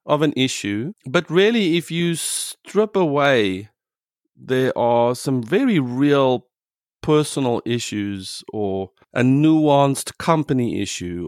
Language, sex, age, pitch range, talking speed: English, male, 30-49, 110-140 Hz, 110 wpm